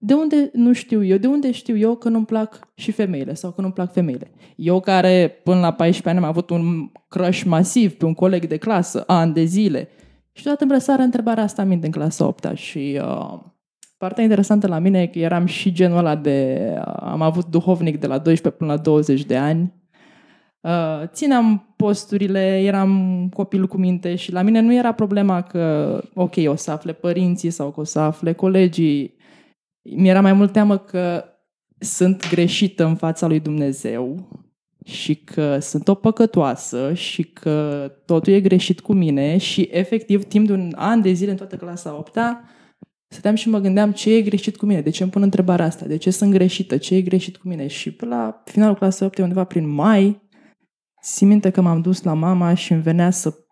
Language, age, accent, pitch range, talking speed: Romanian, 20-39, native, 165-205 Hz, 195 wpm